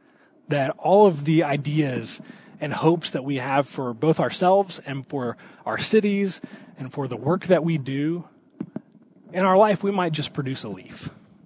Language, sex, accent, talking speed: English, male, American, 175 wpm